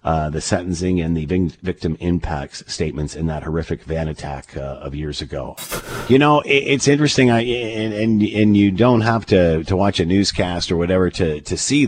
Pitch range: 85-110 Hz